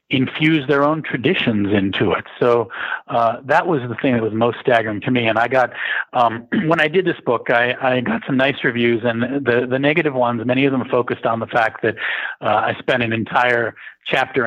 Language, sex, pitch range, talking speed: English, male, 110-130 Hz, 215 wpm